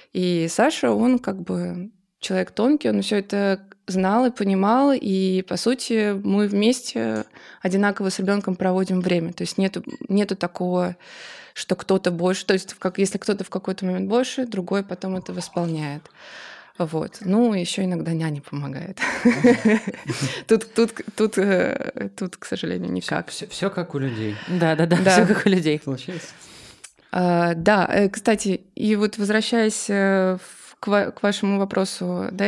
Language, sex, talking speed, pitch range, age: Russian, female, 140 wpm, 185-220 Hz, 20-39